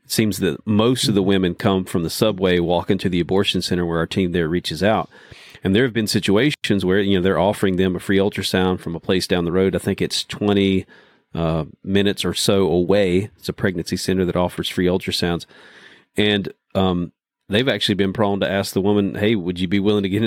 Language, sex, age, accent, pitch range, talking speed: English, male, 40-59, American, 90-105 Hz, 225 wpm